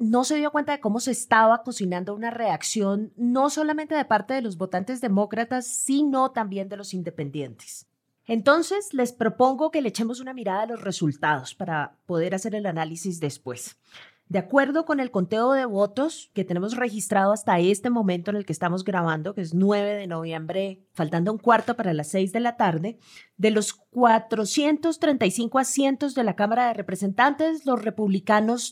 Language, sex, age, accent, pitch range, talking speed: Spanish, female, 30-49, Colombian, 195-260 Hz, 175 wpm